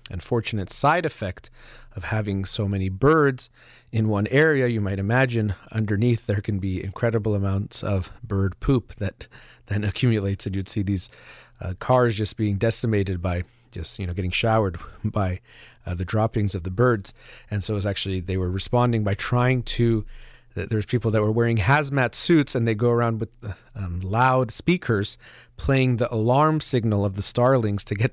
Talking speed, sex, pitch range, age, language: 180 wpm, male, 100-125 Hz, 30-49, English